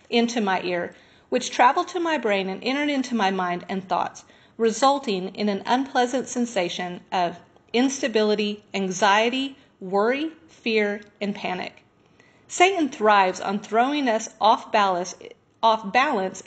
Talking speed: 130 wpm